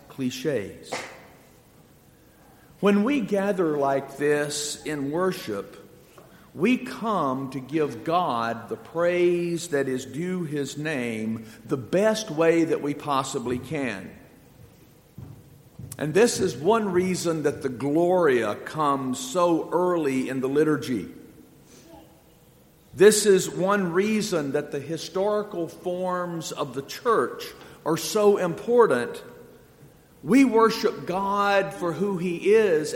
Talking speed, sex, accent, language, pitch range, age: 115 wpm, male, American, English, 140-195 Hz, 50-69